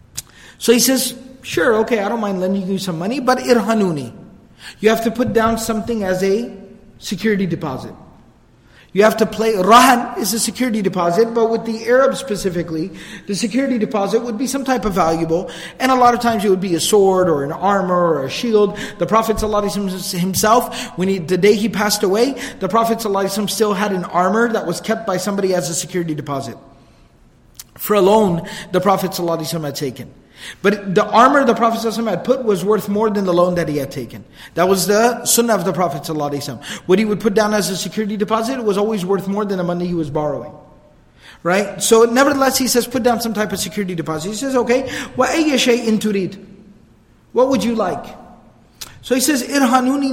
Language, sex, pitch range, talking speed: English, male, 185-230 Hz, 195 wpm